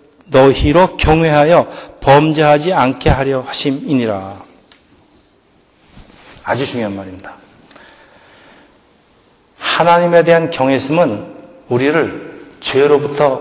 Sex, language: male, Korean